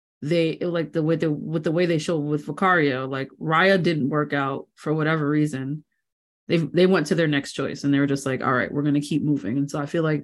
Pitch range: 145-175 Hz